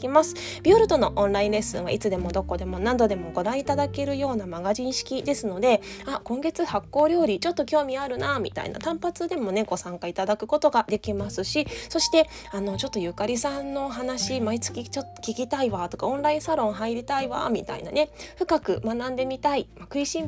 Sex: female